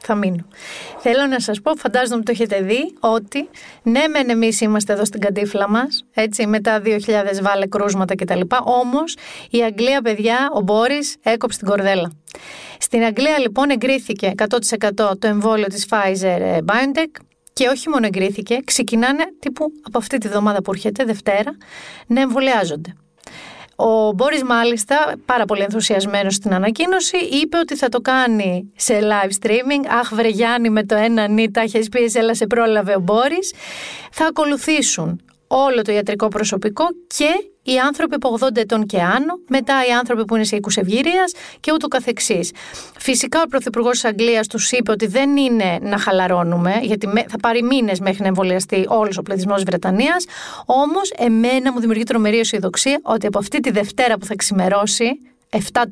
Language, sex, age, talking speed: Greek, female, 30-49, 160 wpm